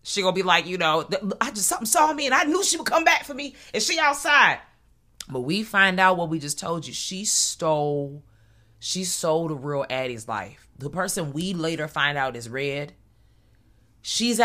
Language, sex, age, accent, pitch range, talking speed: English, female, 30-49, American, 130-195 Hz, 210 wpm